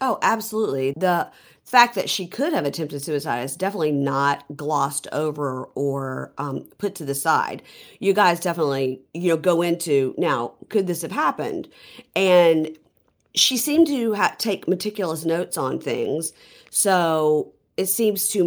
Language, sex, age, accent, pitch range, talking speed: English, female, 50-69, American, 140-185 Hz, 155 wpm